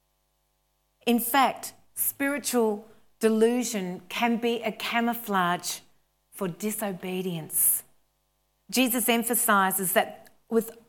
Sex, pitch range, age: female, 185-230 Hz, 40-59